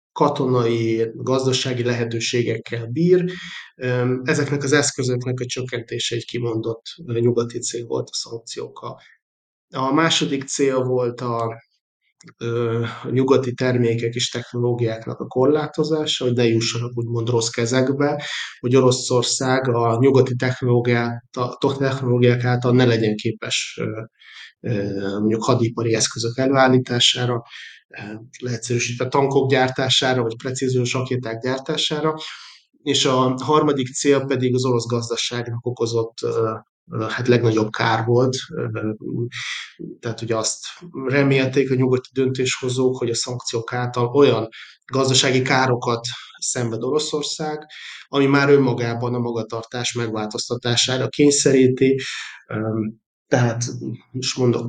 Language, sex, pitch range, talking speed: Hungarian, male, 115-130 Hz, 105 wpm